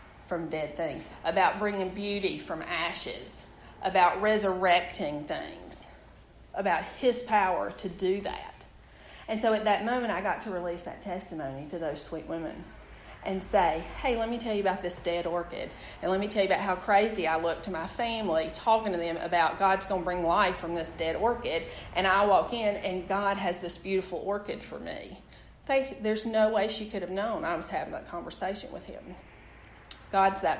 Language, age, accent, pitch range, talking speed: English, 40-59, American, 165-210 Hz, 190 wpm